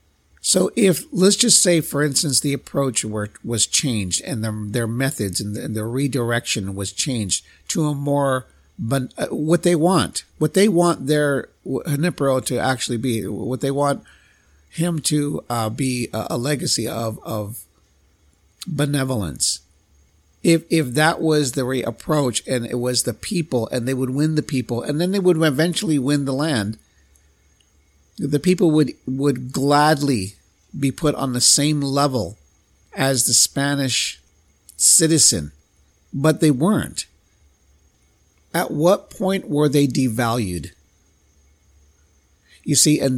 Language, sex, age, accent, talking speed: English, male, 50-69, American, 140 wpm